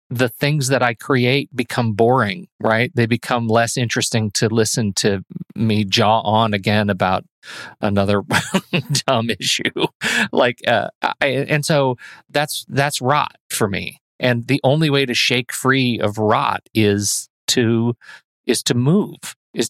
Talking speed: 145 wpm